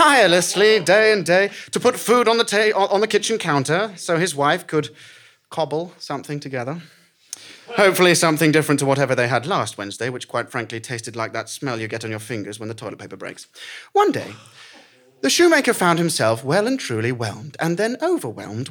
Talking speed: 185 wpm